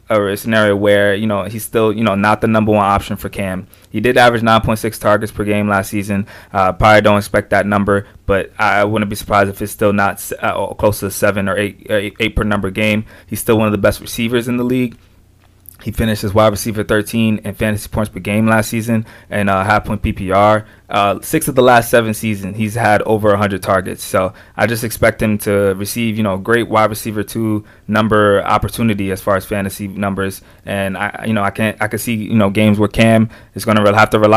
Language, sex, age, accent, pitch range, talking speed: English, male, 20-39, American, 100-110 Hz, 225 wpm